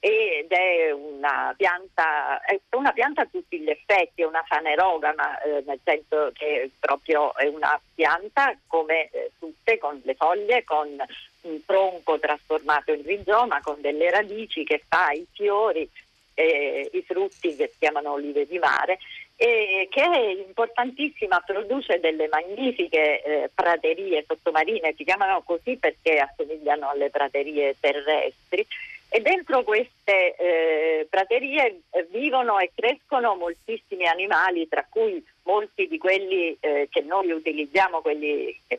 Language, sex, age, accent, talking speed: Italian, female, 50-69, native, 140 wpm